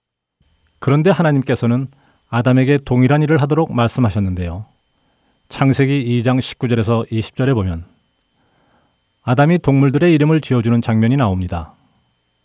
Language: Korean